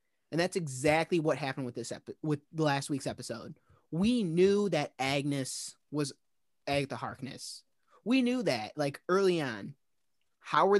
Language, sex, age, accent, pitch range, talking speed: English, male, 20-39, American, 140-190 Hz, 150 wpm